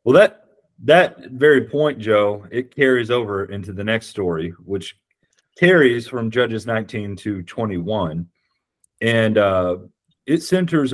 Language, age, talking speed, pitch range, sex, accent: English, 40-59, 130 wpm, 100-130 Hz, male, American